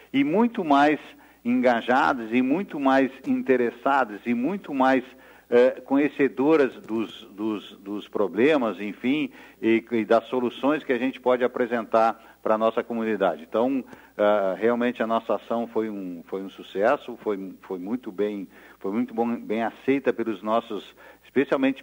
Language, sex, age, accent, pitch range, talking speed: Portuguese, male, 50-69, Brazilian, 110-130 Hz, 150 wpm